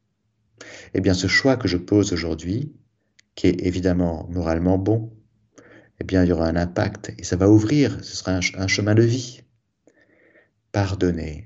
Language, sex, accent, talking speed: French, male, French, 160 wpm